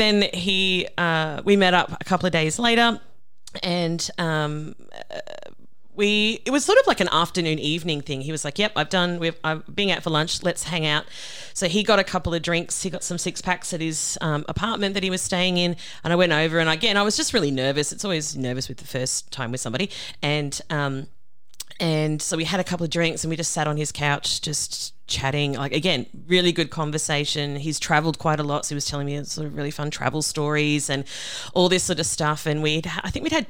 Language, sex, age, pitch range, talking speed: English, female, 30-49, 145-175 Hz, 235 wpm